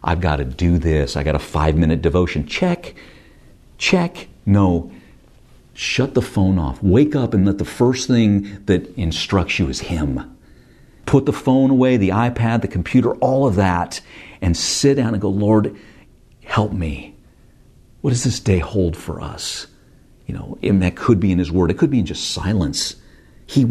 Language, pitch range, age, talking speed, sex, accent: English, 80-120 Hz, 50-69, 180 wpm, male, American